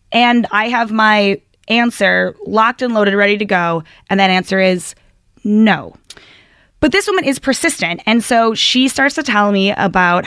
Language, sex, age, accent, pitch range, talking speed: English, female, 20-39, American, 195-245 Hz, 170 wpm